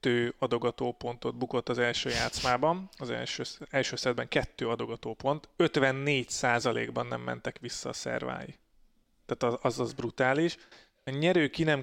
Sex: male